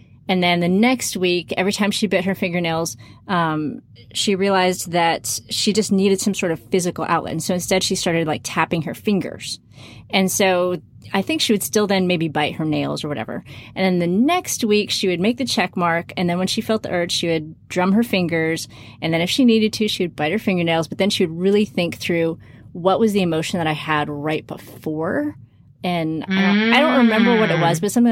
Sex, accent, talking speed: female, American, 230 wpm